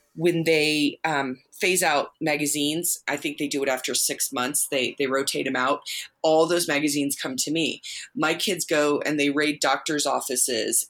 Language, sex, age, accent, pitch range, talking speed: English, female, 20-39, American, 145-180 Hz, 180 wpm